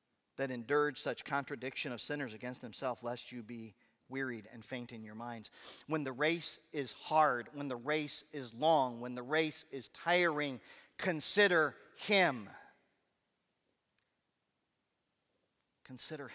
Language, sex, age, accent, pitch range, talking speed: English, male, 40-59, American, 135-180 Hz, 130 wpm